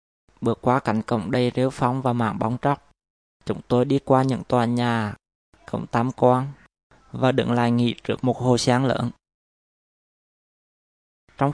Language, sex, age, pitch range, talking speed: Vietnamese, male, 20-39, 110-130 Hz, 160 wpm